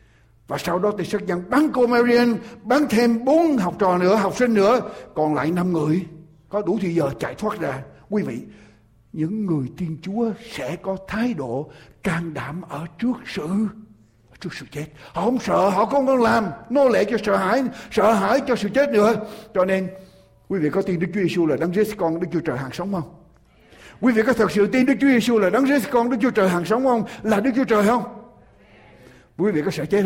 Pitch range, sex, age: 165-235 Hz, male, 60-79